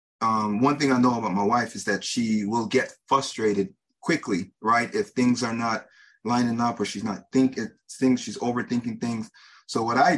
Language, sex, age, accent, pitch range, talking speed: English, male, 30-49, American, 105-125 Hz, 195 wpm